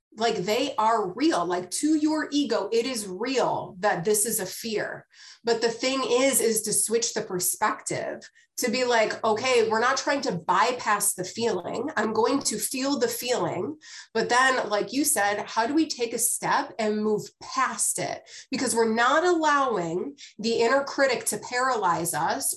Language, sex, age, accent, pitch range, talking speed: English, female, 30-49, American, 205-255 Hz, 180 wpm